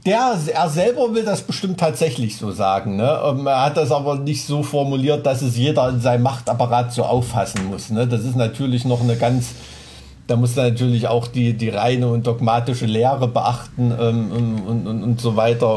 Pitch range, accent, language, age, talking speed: 110-130 Hz, German, German, 50-69, 200 wpm